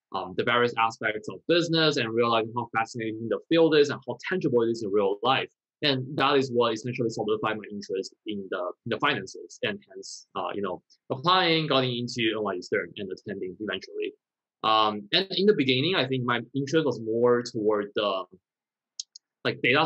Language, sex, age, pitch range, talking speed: English, male, 20-39, 115-155 Hz, 185 wpm